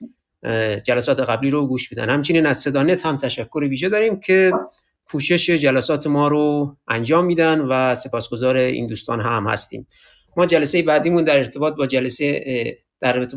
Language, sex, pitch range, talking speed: Persian, male, 130-180 Hz, 155 wpm